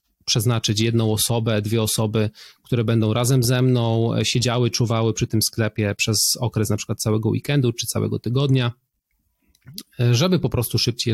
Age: 40-59